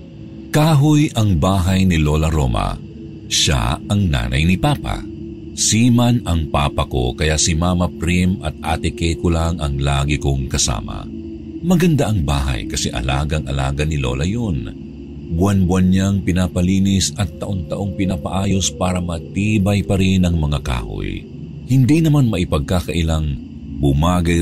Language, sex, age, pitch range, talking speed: Filipino, male, 50-69, 75-100 Hz, 130 wpm